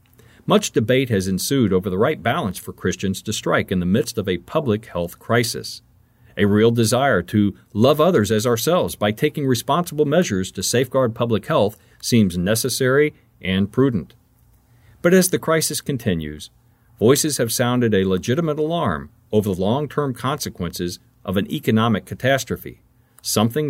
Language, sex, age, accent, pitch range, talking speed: English, male, 50-69, American, 100-130 Hz, 150 wpm